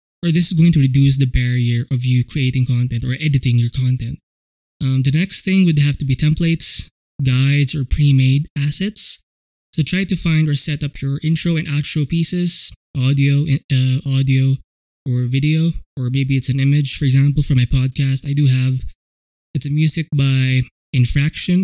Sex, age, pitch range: male, 20-39, 130-155 Hz